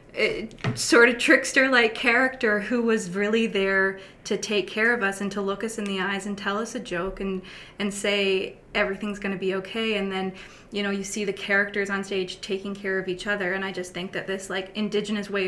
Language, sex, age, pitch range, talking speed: English, female, 20-39, 190-225 Hz, 225 wpm